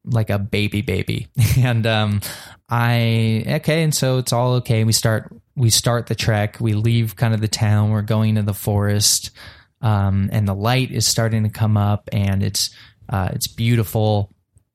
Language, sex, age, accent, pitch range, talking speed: English, male, 20-39, American, 105-120 Hz, 180 wpm